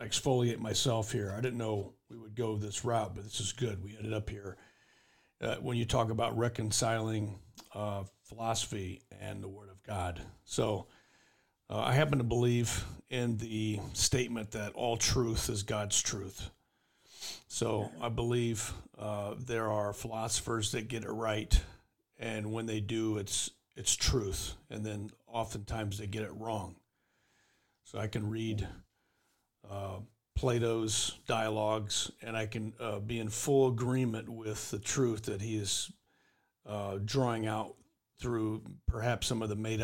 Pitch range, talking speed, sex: 105-115 Hz, 155 wpm, male